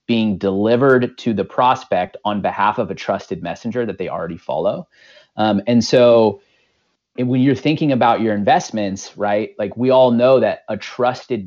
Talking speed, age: 175 wpm, 30-49